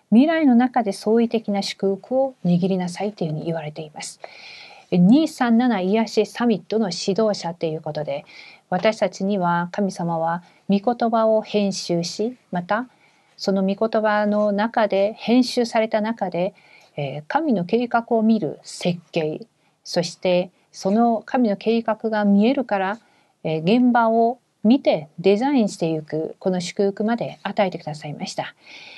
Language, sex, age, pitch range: Korean, female, 40-59, 170-225 Hz